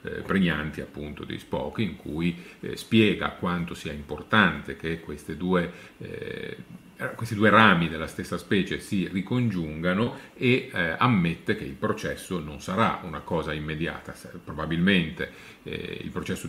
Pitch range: 80-105 Hz